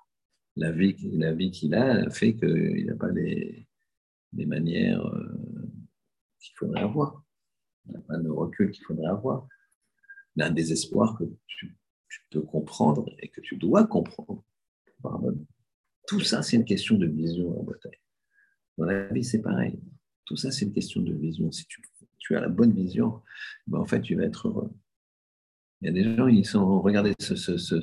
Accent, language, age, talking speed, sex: French, French, 50-69, 185 wpm, male